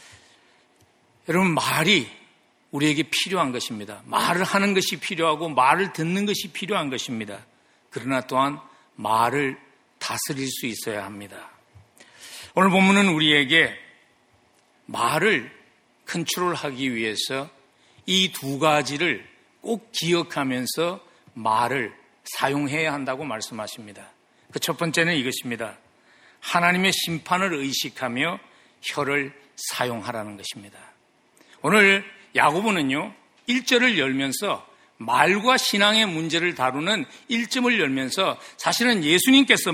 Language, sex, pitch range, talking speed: English, male, 135-200 Hz, 85 wpm